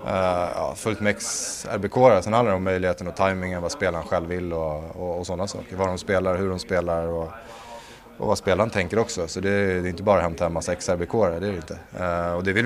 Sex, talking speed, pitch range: male, 230 wpm, 90-105 Hz